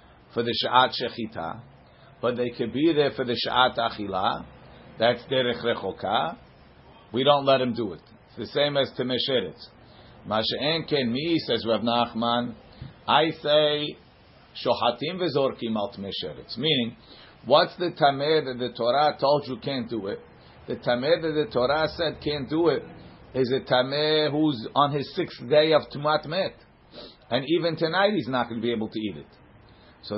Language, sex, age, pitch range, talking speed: English, male, 50-69, 120-165 Hz, 165 wpm